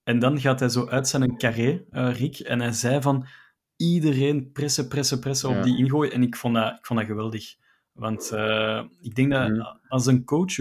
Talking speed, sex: 210 wpm, male